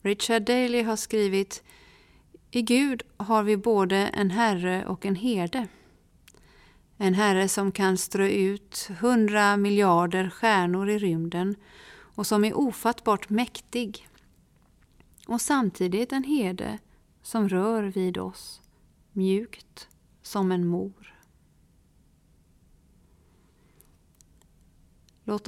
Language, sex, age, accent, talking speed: Swedish, female, 30-49, native, 100 wpm